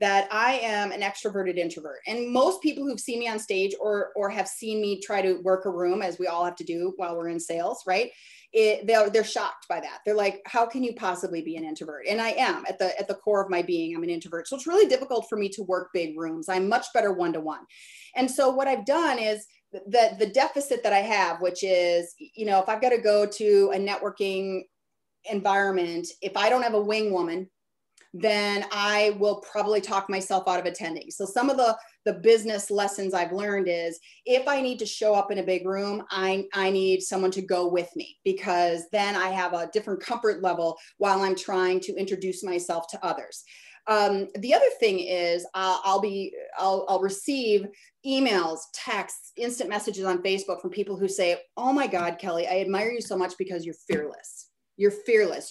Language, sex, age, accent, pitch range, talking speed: English, female, 30-49, American, 185-225 Hz, 215 wpm